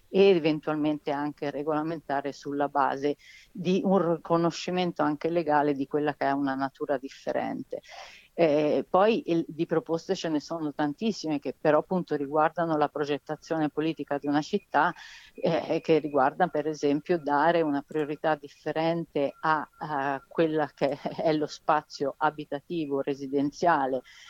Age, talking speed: 50-69, 135 wpm